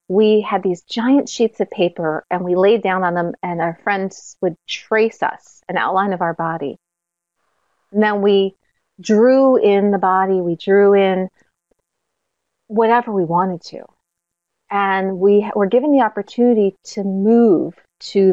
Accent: American